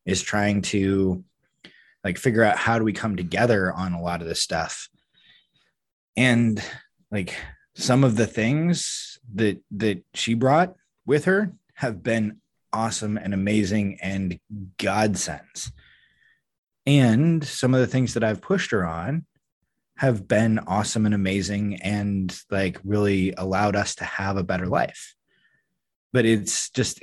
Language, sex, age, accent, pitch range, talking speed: English, male, 20-39, American, 95-120 Hz, 140 wpm